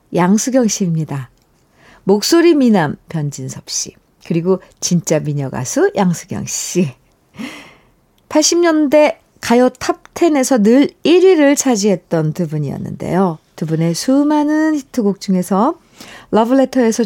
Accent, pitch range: native, 170-265 Hz